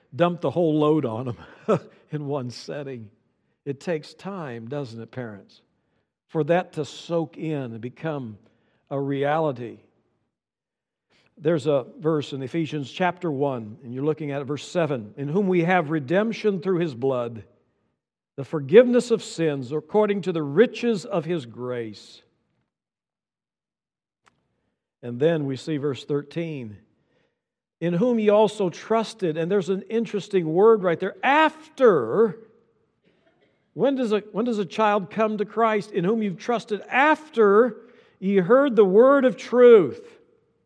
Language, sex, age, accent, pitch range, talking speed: English, male, 60-79, American, 145-220 Hz, 140 wpm